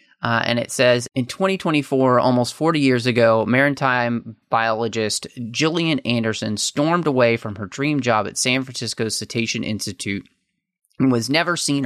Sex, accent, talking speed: male, American, 145 wpm